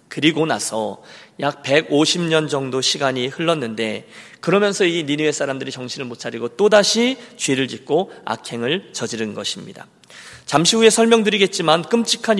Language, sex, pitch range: Korean, male, 130-190 Hz